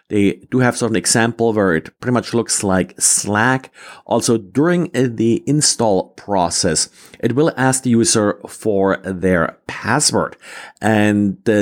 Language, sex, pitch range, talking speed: English, male, 100-135 Hz, 145 wpm